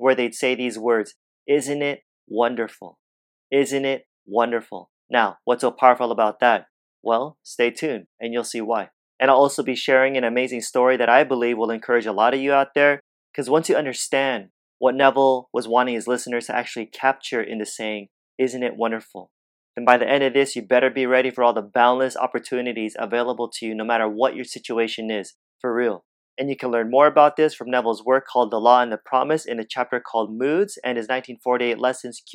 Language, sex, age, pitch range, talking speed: English, male, 30-49, 115-135 Hz, 210 wpm